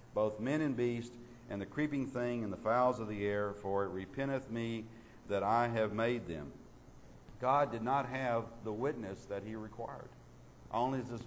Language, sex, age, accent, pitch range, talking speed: English, male, 50-69, American, 100-125 Hz, 180 wpm